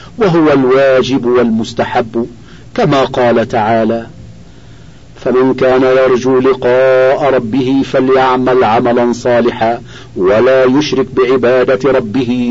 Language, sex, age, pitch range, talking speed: Arabic, male, 50-69, 125-135 Hz, 85 wpm